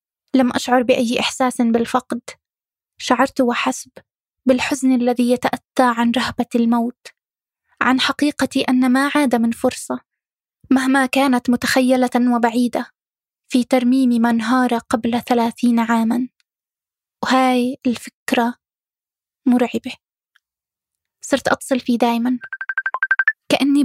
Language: Arabic